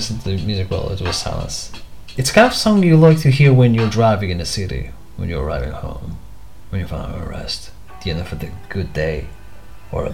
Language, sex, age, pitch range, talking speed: English, male, 30-49, 100-155 Hz, 235 wpm